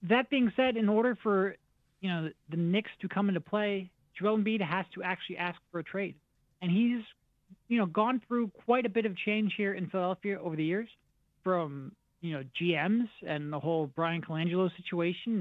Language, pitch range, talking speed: English, 165-200 Hz, 200 wpm